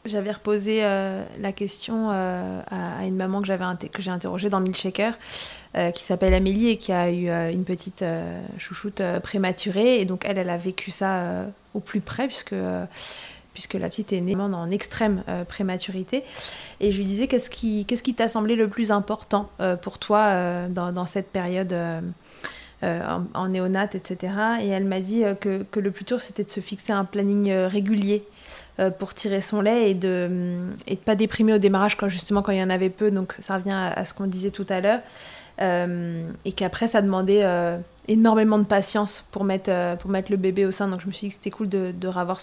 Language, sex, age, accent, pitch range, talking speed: French, female, 30-49, French, 185-210 Hz, 225 wpm